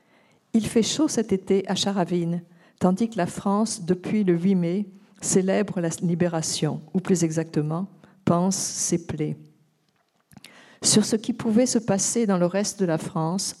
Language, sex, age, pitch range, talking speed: French, female, 50-69, 175-210 Hz, 160 wpm